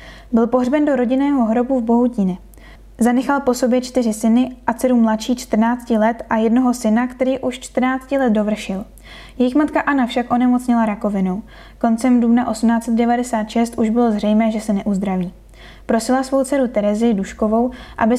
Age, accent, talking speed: 10-29, native, 150 wpm